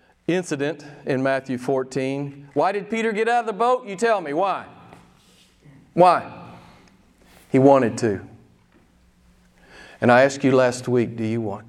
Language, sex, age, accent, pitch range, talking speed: English, male, 40-59, American, 195-285 Hz, 150 wpm